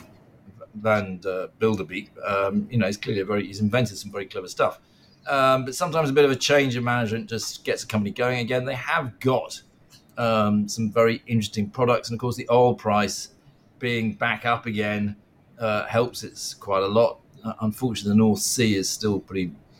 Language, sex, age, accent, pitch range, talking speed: English, male, 40-59, British, 105-130 Hz, 190 wpm